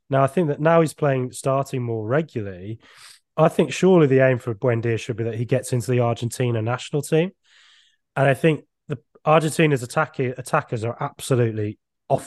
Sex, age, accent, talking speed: male, 20-39, British, 180 wpm